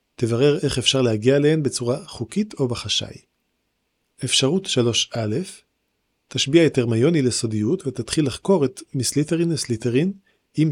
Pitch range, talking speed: 115-145 Hz, 120 wpm